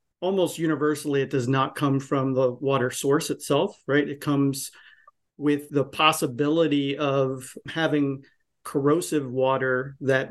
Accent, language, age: American, English, 40-59